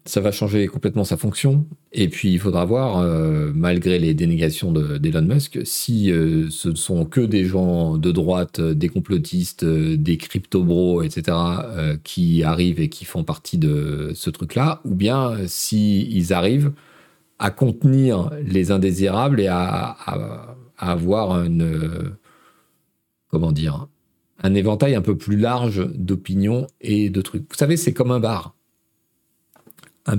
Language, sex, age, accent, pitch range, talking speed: French, male, 40-59, French, 90-125 Hz, 155 wpm